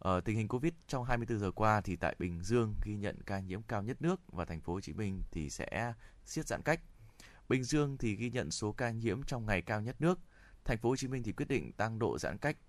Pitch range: 95-120 Hz